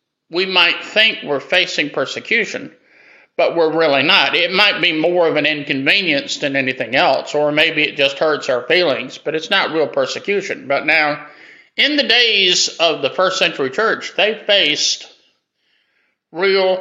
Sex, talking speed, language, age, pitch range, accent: male, 160 wpm, English, 50-69, 155-210 Hz, American